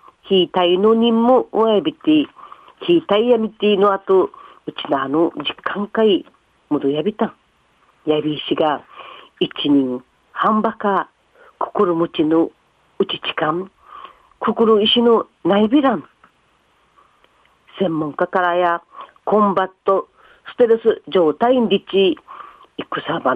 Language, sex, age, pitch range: Japanese, female, 40-59, 175-290 Hz